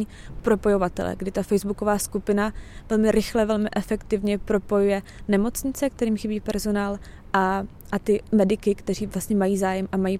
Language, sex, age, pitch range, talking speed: Czech, female, 20-39, 195-215 Hz, 140 wpm